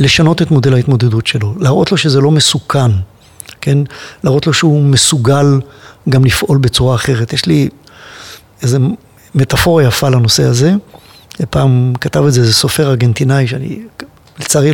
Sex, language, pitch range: male, Hebrew, 125-190 Hz